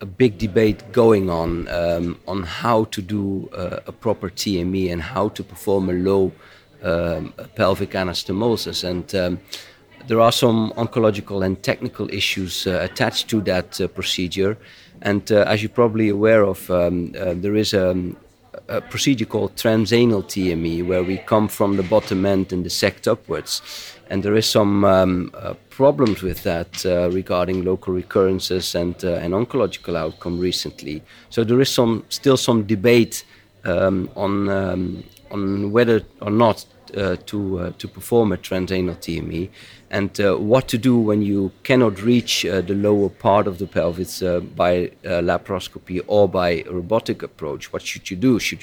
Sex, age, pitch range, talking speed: male, 50-69, 90-110 Hz, 170 wpm